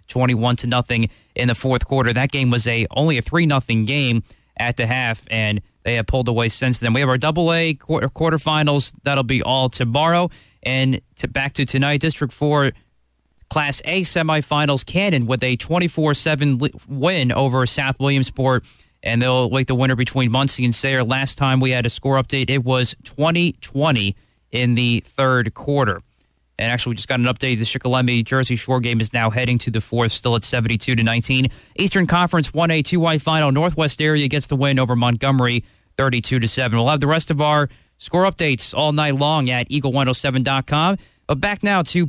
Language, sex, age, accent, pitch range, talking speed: English, male, 30-49, American, 120-155 Hz, 185 wpm